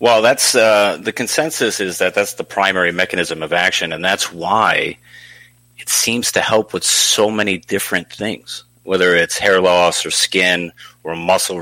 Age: 30-49